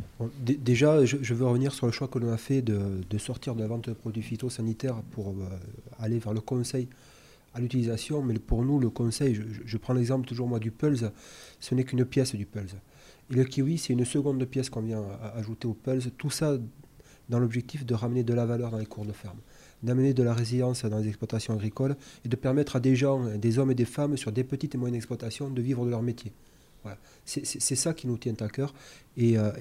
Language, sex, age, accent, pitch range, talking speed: French, male, 30-49, French, 115-135 Hz, 235 wpm